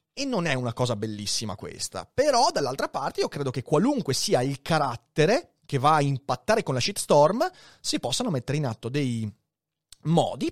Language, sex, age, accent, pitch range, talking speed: Italian, male, 30-49, native, 120-180 Hz, 175 wpm